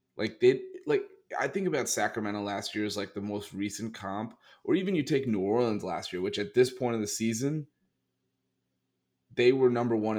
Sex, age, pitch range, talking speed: male, 30-49, 100-120 Hz, 200 wpm